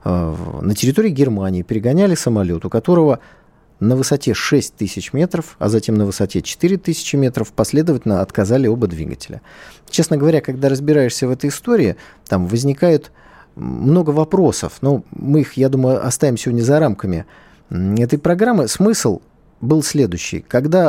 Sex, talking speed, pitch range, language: male, 140 wpm, 115-155 Hz, Russian